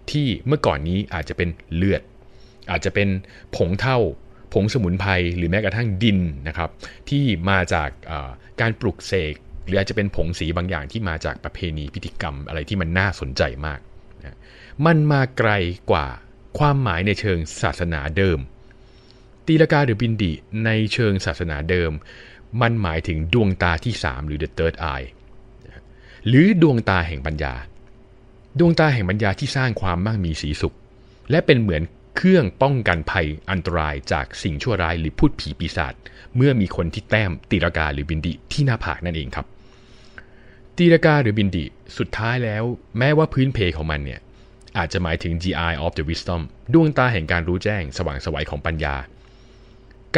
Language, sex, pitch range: Thai, male, 85-120 Hz